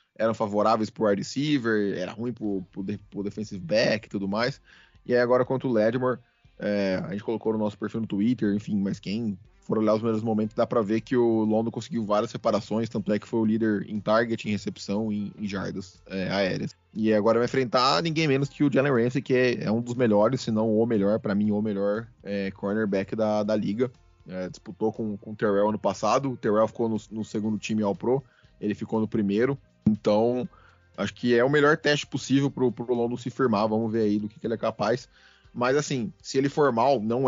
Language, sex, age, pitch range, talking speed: Portuguese, male, 20-39, 105-130 Hz, 225 wpm